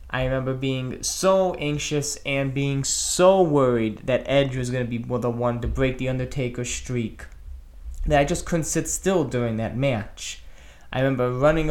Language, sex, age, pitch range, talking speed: English, male, 20-39, 120-145 Hz, 175 wpm